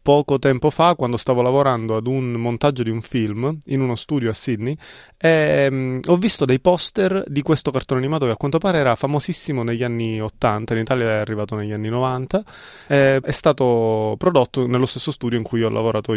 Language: Italian